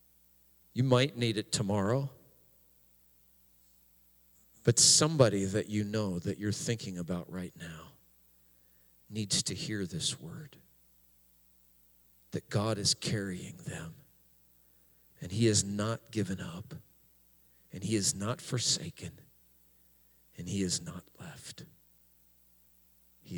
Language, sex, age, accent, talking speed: English, male, 40-59, American, 110 wpm